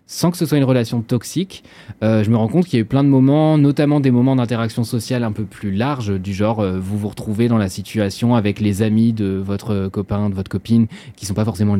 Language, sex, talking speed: French, male, 260 wpm